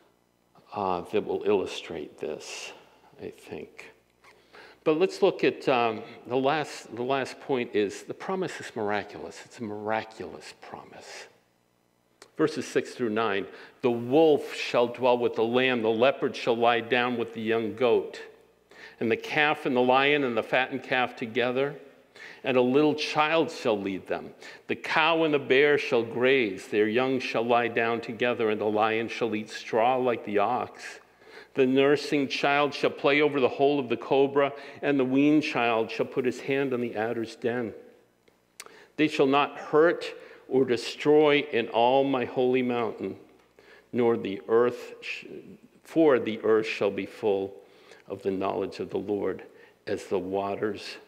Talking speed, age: 165 wpm, 50-69